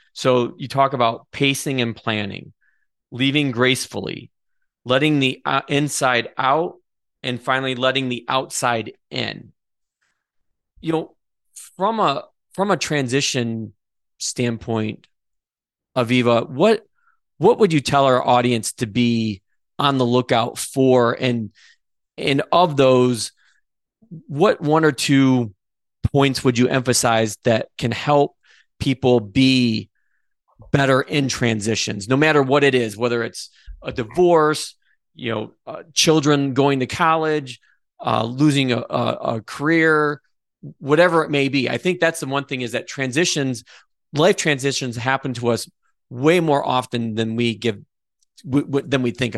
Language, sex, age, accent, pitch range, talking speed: English, male, 30-49, American, 120-145 Hz, 130 wpm